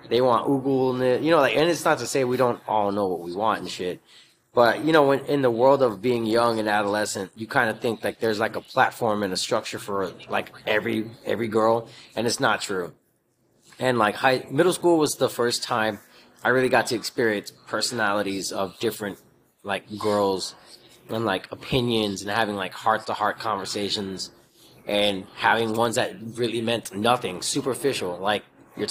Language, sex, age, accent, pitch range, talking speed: English, male, 20-39, American, 105-130 Hz, 195 wpm